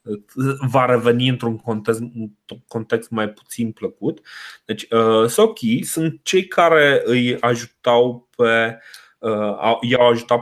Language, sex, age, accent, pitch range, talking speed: Romanian, male, 20-39, native, 115-165 Hz, 105 wpm